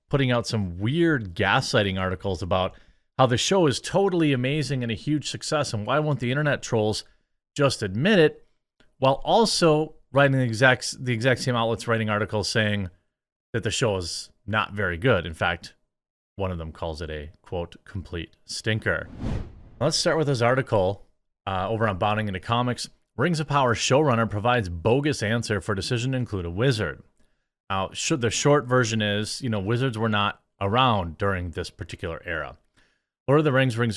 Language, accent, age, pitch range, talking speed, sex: English, American, 30-49, 100-130 Hz, 175 wpm, male